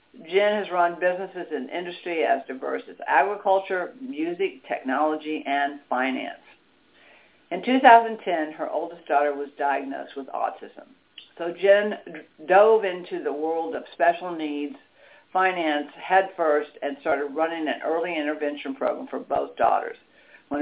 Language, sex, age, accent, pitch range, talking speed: English, female, 60-79, American, 155-205 Hz, 130 wpm